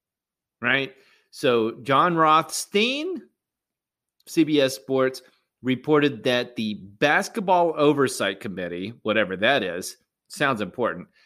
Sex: male